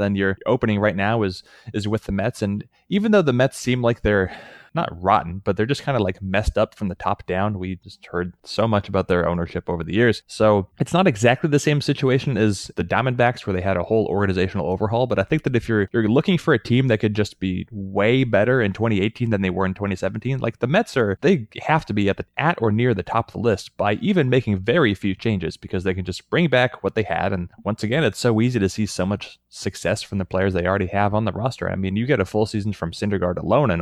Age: 20-39